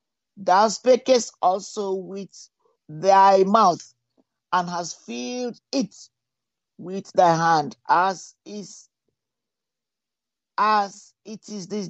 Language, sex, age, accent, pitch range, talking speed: English, male, 50-69, Nigerian, 165-215 Hz, 95 wpm